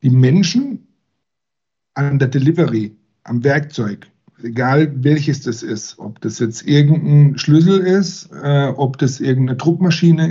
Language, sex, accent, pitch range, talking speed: German, male, German, 120-160 Hz, 130 wpm